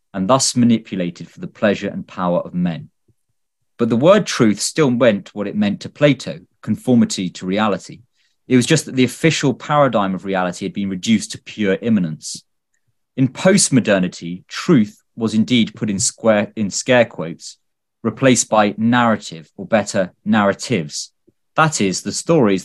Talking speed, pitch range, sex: 160 wpm, 95-130 Hz, male